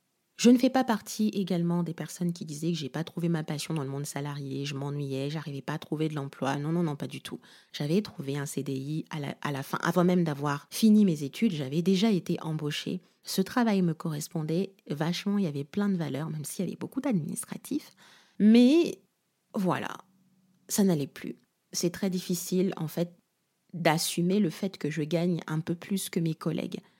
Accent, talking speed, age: French, 210 wpm, 30-49